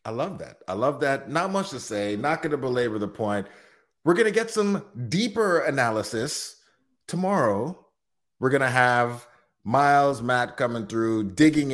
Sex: male